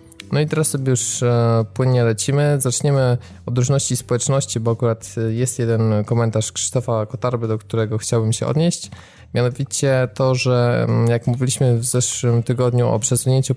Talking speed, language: 145 wpm, Polish